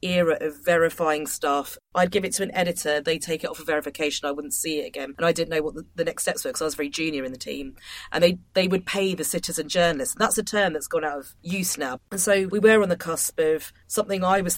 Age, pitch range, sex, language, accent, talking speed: 30-49, 150-190 Hz, female, English, British, 280 wpm